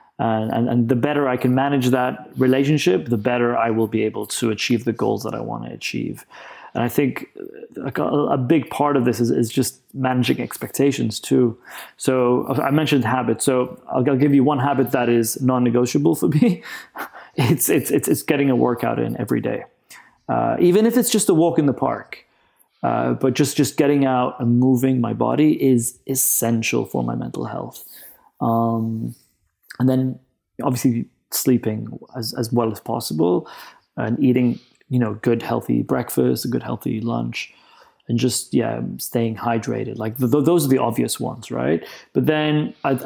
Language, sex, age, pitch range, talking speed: English, male, 30-49, 120-140 Hz, 180 wpm